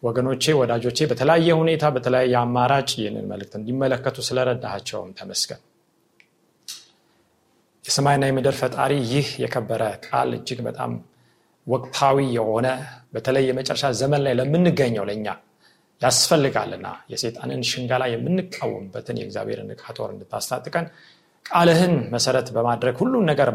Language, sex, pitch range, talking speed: Amharic, male, 120-150 Hz, 100 wpm